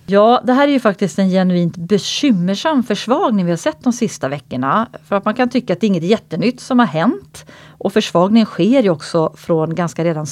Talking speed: 215 wpm